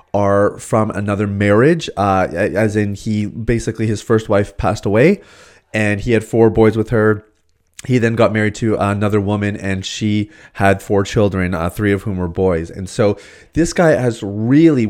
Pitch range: 100-120 Hz